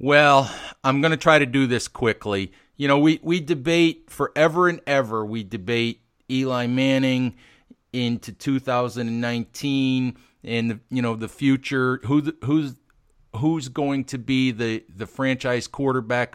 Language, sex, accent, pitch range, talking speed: English, male, American, 115-130 Hz, 135 wpm